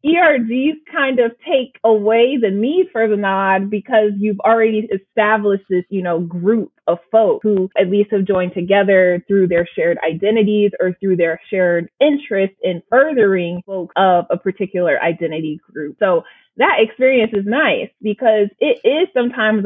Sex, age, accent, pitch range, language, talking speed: female, 20-39, American, 180-220 Hz, English, 160 wpm